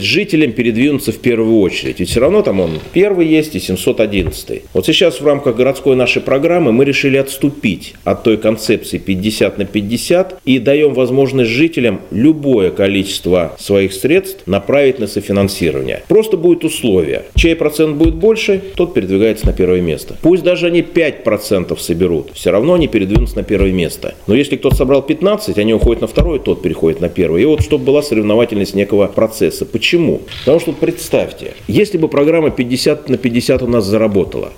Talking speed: 175 wpm